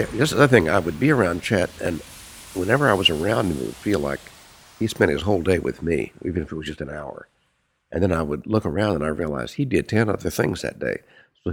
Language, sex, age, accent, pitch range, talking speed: English, male, 60-79, American, 85-115 Hz, 260 wpm